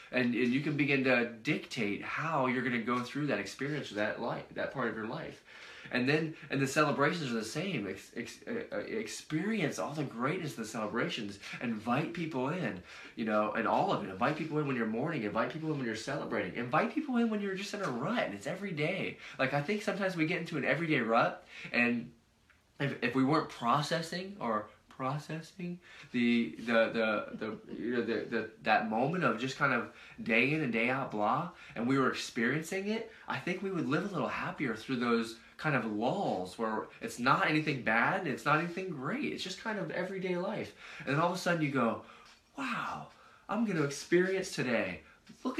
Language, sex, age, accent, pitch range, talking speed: English, male, 20-39, American, 120-175 Hz, 210 wpm